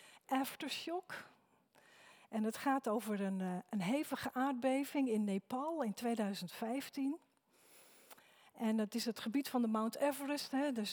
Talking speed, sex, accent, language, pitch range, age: 125 wpm, female, Dutch, Dutch, 215-275 Hz, 40-59